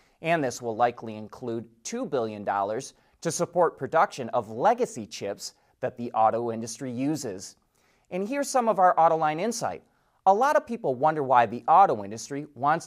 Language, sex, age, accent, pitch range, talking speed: English, male, 30-49, American, 135-200 Hz, 165 wpm